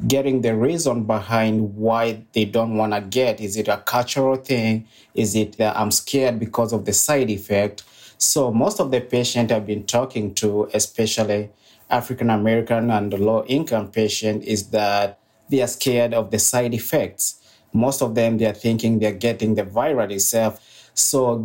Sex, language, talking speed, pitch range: male, English, 170 wpm, 105-120 Hz